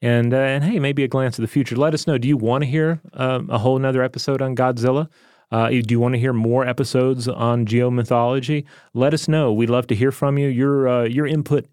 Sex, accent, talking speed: male, American, 245 wpm